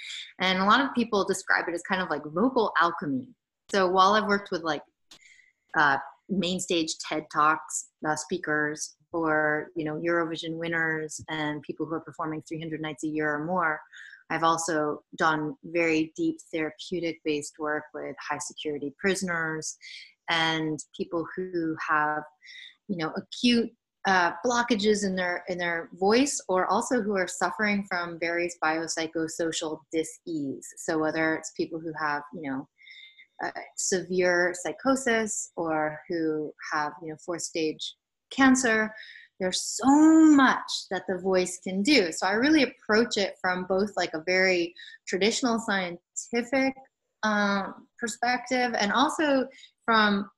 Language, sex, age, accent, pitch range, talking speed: English, female, 30-49, American, 160-225 Hz, 145 wpm